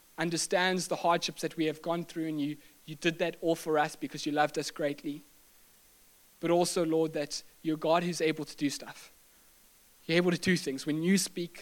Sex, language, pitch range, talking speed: male, English, 155-175 Hz, 205 wpm